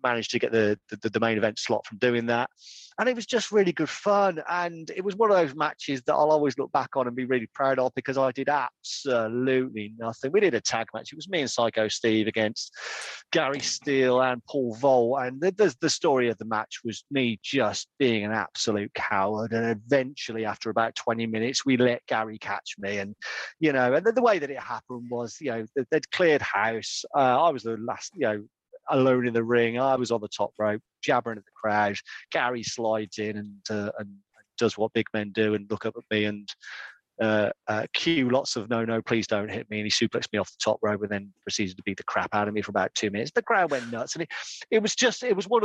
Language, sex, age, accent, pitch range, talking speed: English, male, 30-49, British, 110-135 Hz, 240 wpm